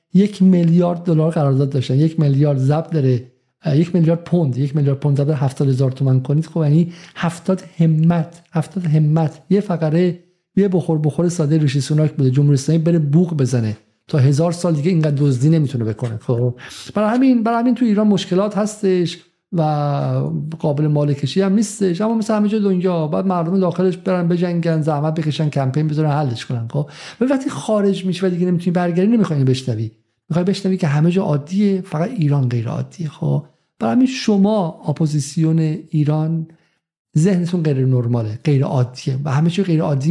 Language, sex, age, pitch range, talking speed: Persian, male, 50-69, 140-175 Hz, 160 wpm